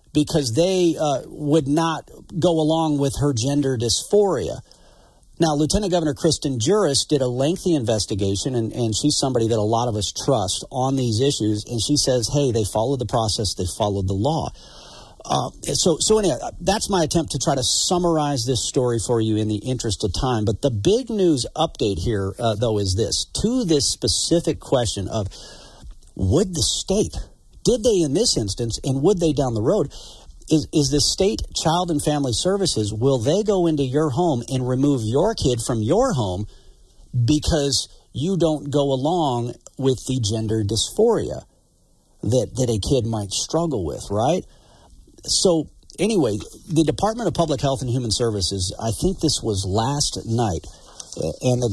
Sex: male